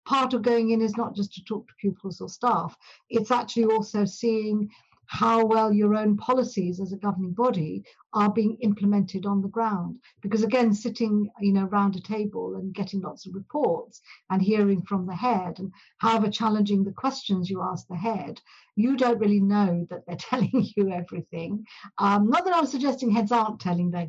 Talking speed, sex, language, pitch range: 190 wpm, female, English, 195-230 Hz